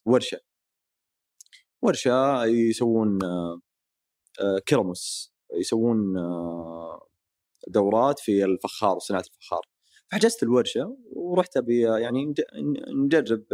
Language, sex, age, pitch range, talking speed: Arabic, male, 30-49, 95-135 Hz, 65 wpm